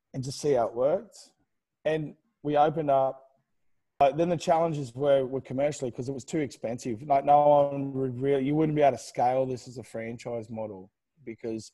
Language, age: English, 20-39